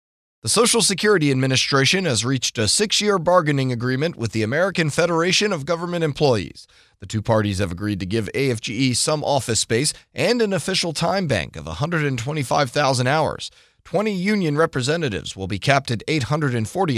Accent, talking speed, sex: American, 155 wpm, male